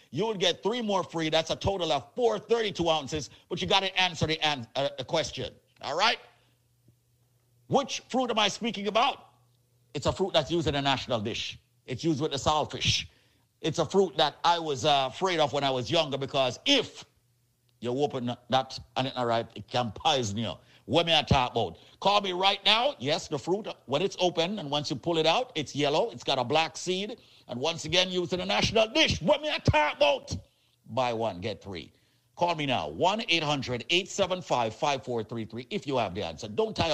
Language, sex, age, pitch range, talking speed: English, male, 50-69, 125-190 Hz, 205 wpm